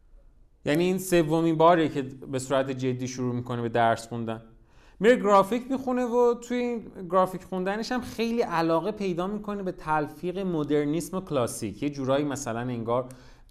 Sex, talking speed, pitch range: male, 150 wpm, 130-185 Hz